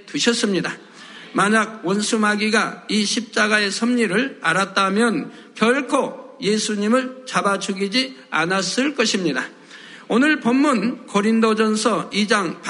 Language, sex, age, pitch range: Korean, male, 60-79, 210-250 Hz